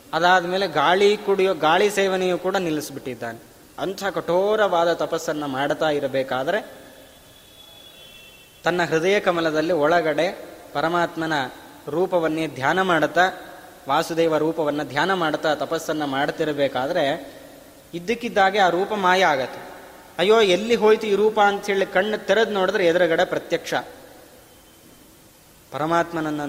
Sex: male